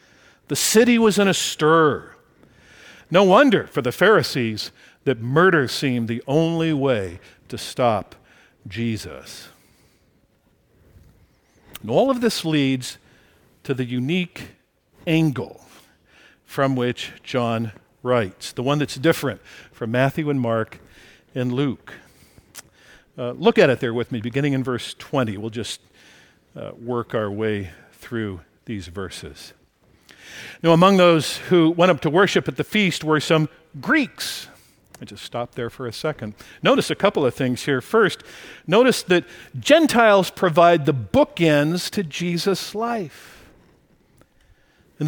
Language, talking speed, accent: English, 135 wpm, American